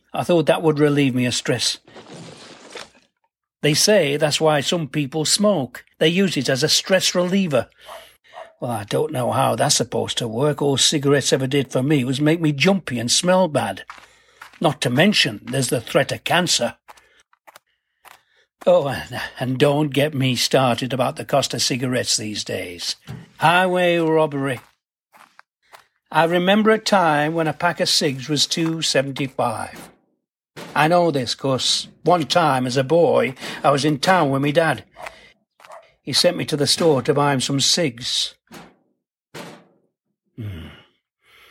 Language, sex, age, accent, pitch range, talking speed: English, male, 60-79, British, 120-160 Hz, 155 wpm